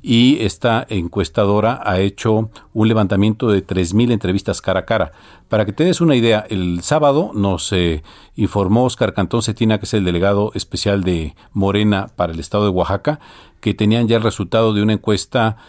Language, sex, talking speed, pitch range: Spanish, male, 180 wpm, 95-120 Hz